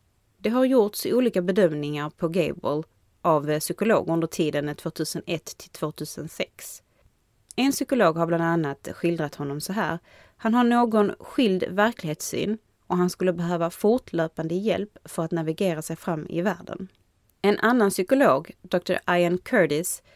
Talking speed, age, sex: 135 wpm, 30-49, female